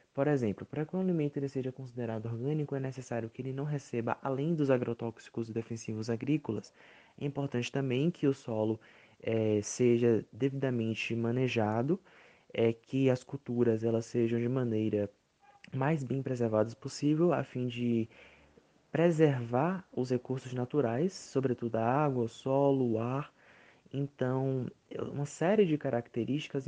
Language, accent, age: English, Brazilian, 20-39